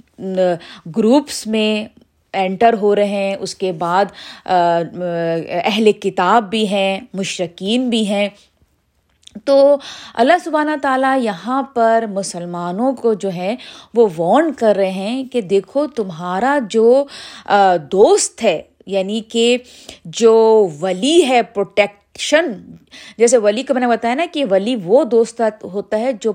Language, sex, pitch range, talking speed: Urdu, female, 195-260 Hz, 130 wpm